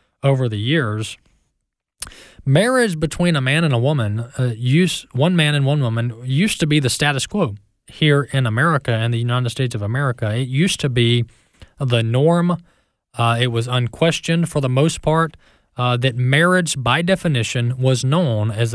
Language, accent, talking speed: English, American, 175 wpm